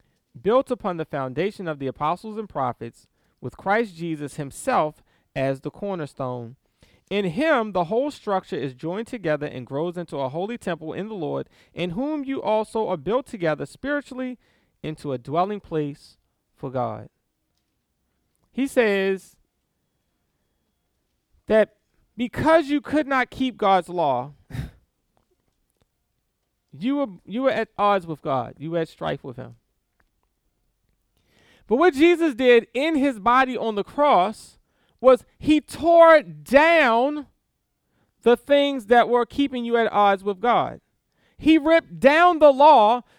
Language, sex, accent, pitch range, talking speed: English, male, American, 155-260 Hz, 140 wpm